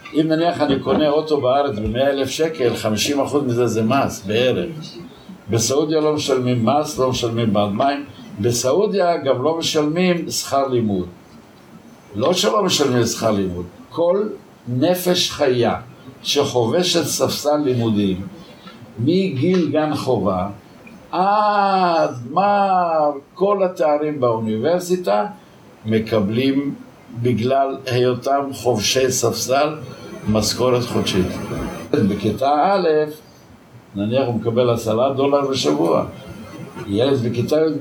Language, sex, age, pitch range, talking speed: Hebrew, male, 60-79, 115-155 Hz, 100 wpm